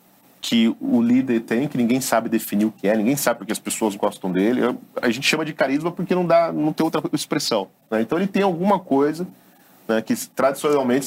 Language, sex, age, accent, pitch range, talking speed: Portuguese, male, 40-59, Brazilian, 105-155 Hz, 210 wpm